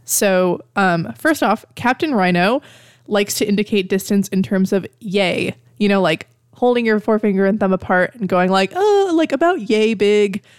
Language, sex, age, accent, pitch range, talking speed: English, female, 20-39, American, 170-205 Hz, 175 wpm